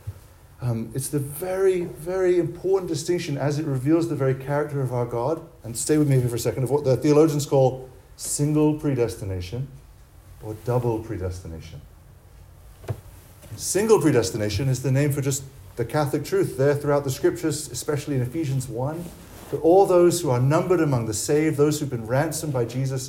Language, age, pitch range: English, 40-59, 115-150 Hz